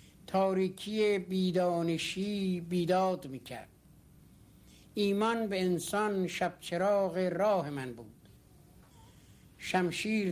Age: 60-79